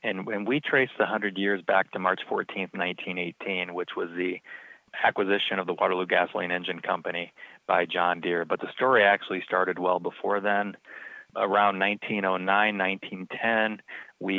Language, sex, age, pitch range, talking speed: English, male, 30-49, 90-100 Hz, 145 wpm